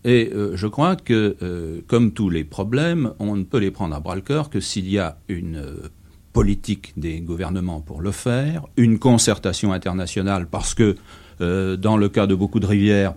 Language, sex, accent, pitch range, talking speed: French, male, French, 90-110 Hz, 200 wpm